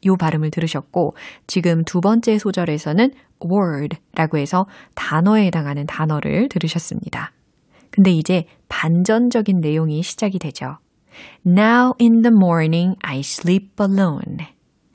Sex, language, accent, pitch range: female, Korean, native, 160-225 Hz